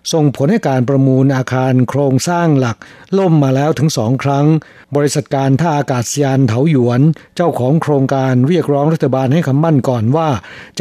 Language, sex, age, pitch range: Thai, male, 60-79, 130-155 Hz